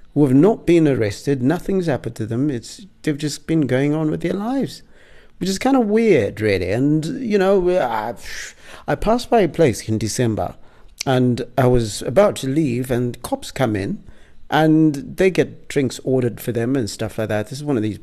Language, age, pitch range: English, 50-69, 115-155 Hz